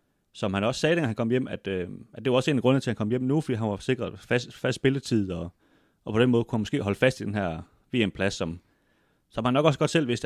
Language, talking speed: Danish, 290 wpm